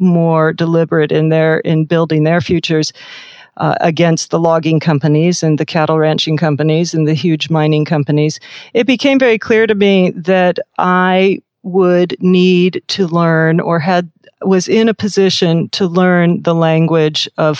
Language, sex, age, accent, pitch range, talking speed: English, female, 40-59, American, 155-185 Hz, 155 wpm